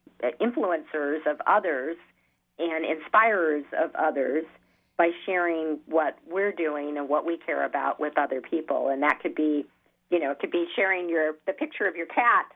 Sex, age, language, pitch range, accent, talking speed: female, 40-59, English, 145-170 Hz, American, 170 wpm